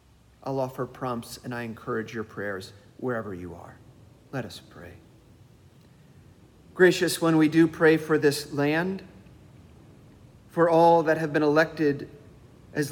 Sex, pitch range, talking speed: male, 110-160 Hz, 135 wpm